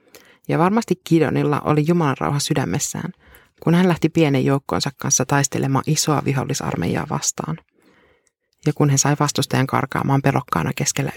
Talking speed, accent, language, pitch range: 135 wpm, native, Finnish, 150-175 Hz